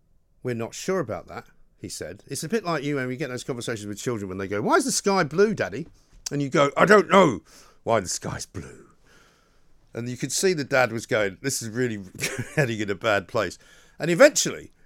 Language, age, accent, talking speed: English, 50-69, British, 225 wpm